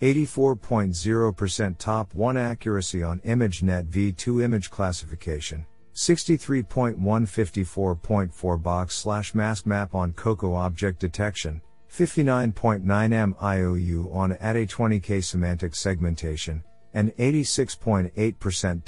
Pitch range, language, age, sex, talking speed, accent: 90-110 Hz, English, 50-69, male, 75 wpm, American